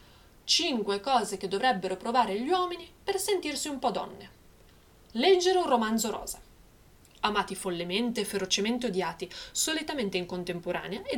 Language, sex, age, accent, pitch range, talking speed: Italian, female, 20-39, native, 190-255 Hz, 135 wpm